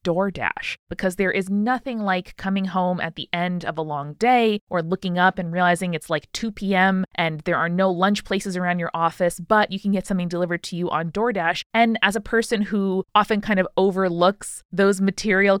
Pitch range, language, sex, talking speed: 165-210 Hz, English, female, 210 wpm